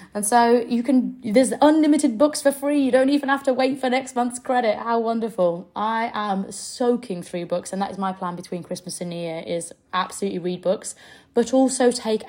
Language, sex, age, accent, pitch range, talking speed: English, female, 20-39, British, 185-245 Hz, 210 wpm